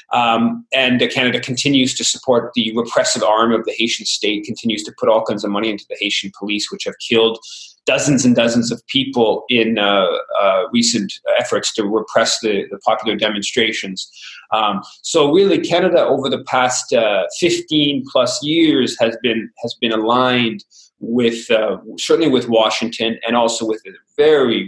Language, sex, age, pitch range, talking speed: English, male, 30-49, 110-160 Hz, 170 wpm